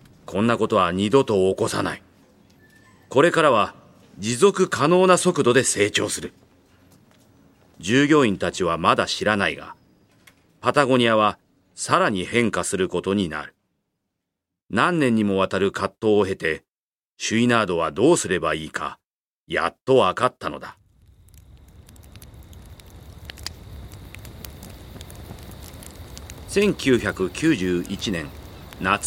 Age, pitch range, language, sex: 40-59, 90-125 Hz, Japanese, male